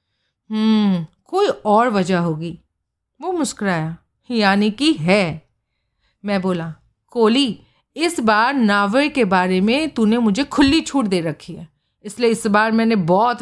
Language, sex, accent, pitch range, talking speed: Hindi, female, native, 185-235 Hz, 135 wpm